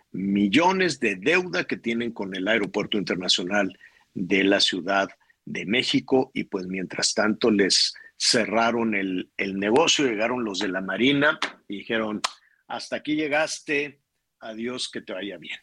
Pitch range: 100-140 Hz